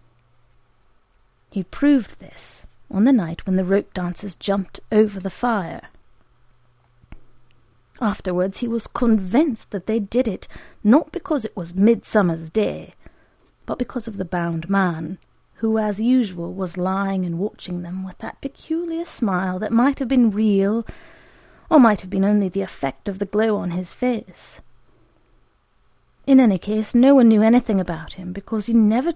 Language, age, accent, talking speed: English, 30-49, British, 155 wpm